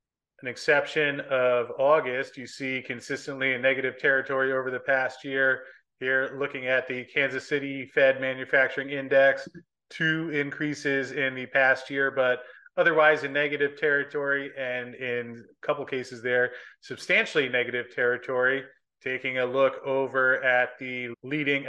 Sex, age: male, 30-49